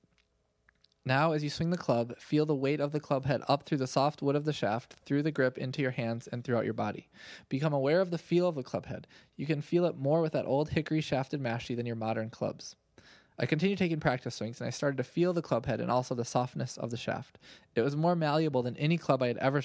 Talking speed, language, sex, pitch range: 260 wpm, English, male, 125-150 Hz